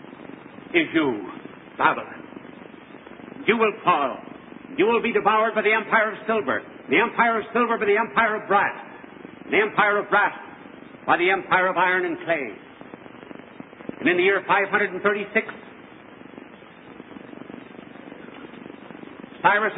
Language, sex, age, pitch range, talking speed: English, male, 60-79, 190-230 Hz, 125 wpm